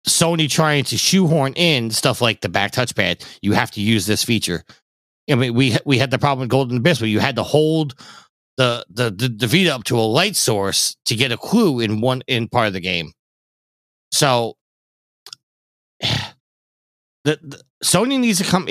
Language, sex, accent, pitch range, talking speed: English, male, American, 110-150 Hz, 190 wpm